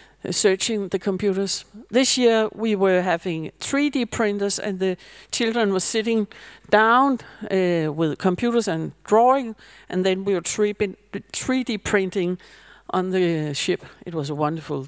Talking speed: 135 wpm